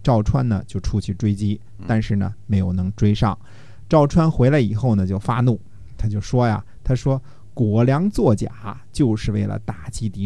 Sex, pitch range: male, 105-130 Hz